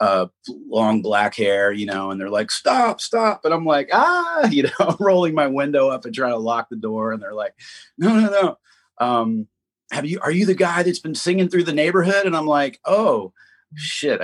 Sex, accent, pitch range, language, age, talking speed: male, American, 100-150 Hz, English, 30-49, 220 wpm